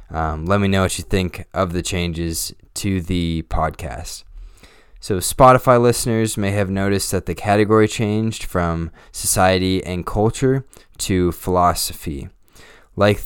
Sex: male